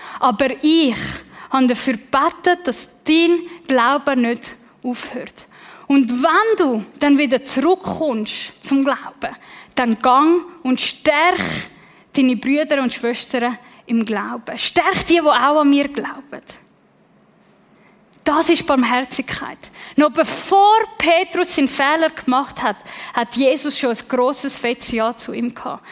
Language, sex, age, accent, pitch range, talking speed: German, female, 10-29, Swiss, 255-315 Hz, 125 wpm